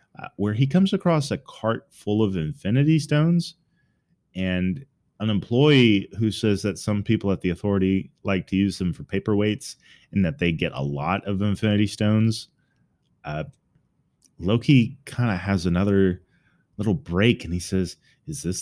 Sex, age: male, 30-49